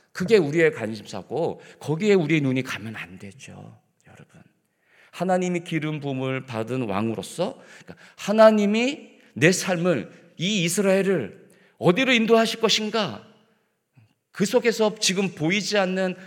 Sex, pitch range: male, 125-195 Hz